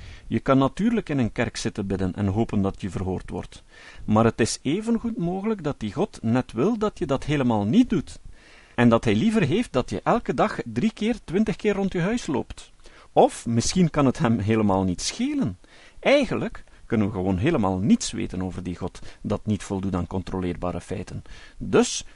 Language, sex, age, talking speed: Dutch, male, 50-69, 200 wpm